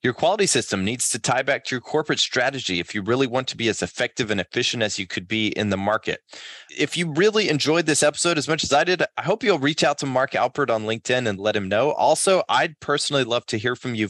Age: 30-49